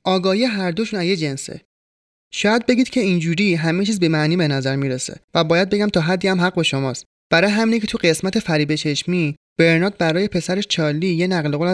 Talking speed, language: 200 wpm, Persian